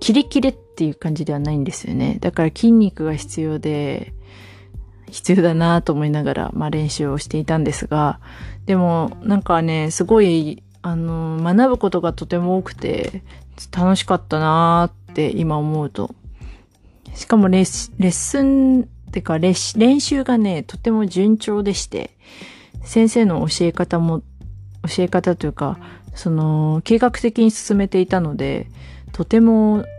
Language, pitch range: Japanese, 145-200 Hz